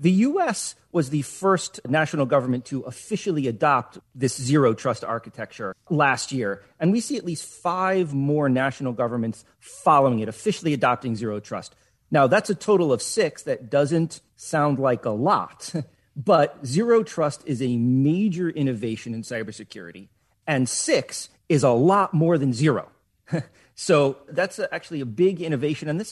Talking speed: 150 wpm